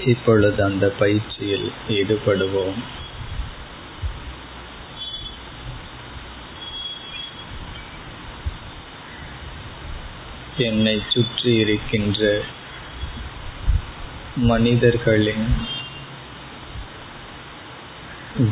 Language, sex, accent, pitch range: Tamil, male, native, 105-115 Hz